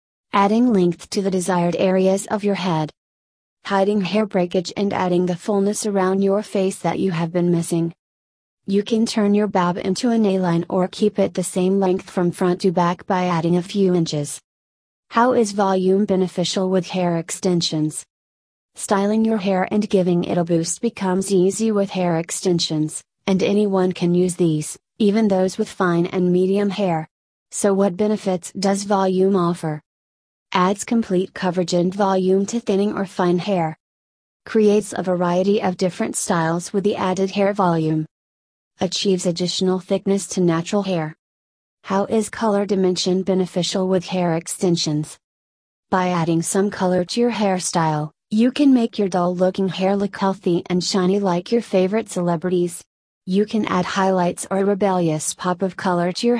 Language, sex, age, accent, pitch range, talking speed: English, female, 30-49, American, 175-200 Hz, 165 wpm